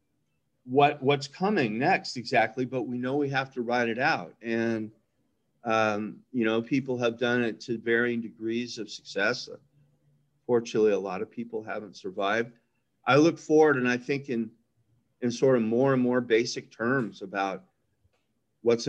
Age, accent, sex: 40-59, American, male